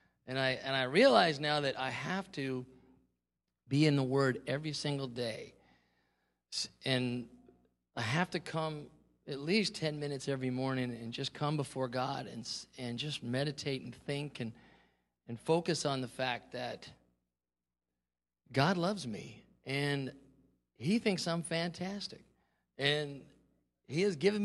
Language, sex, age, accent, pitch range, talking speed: English, male, 40-59, American, 120-155 Hz, 140 wpm